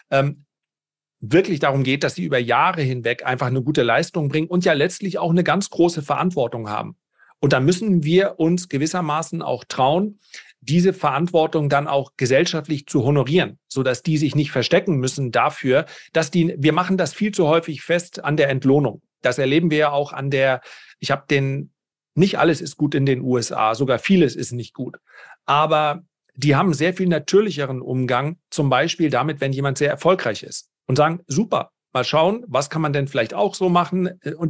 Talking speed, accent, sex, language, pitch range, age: 185 wpm, German, male, German, 135-165 Hz, 40-59